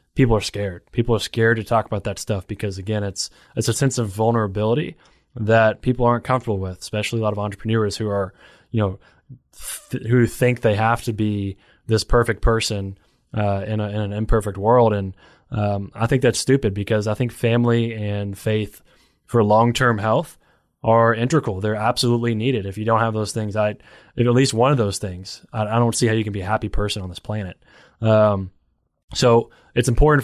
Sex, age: male, 20-39